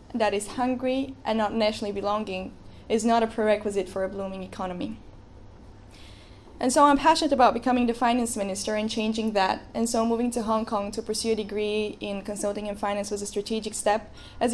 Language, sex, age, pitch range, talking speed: English, female, 10-29, 200-230 Hz, 190 wpm